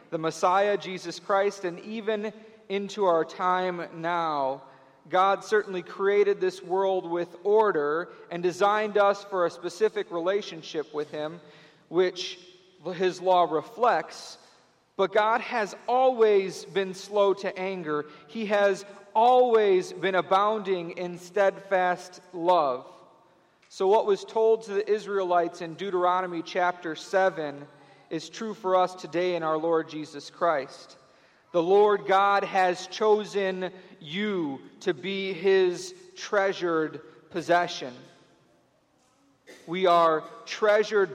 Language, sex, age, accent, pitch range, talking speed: English, male, 40-59, American, 170-205 Hz, 120 wpm